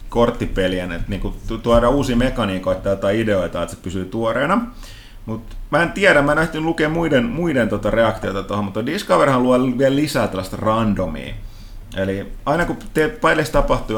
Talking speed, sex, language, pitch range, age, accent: 155 wpm, male, Finnish, 100-125 Hz, 30-49, native